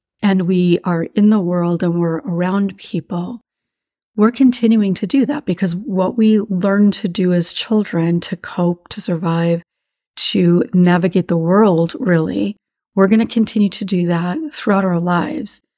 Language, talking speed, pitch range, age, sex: English, 160 wpm, 175-225 Hz, 40-59, female